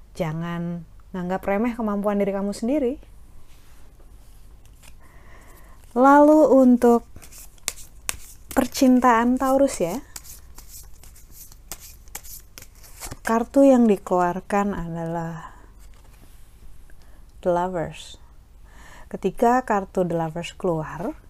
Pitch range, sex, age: 170-230 Hz, female, 30-49